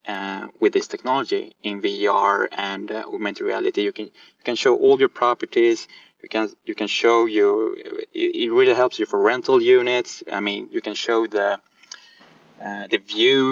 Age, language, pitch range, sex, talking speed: 20-39, English, 100-135 Hz, male, 180 wpm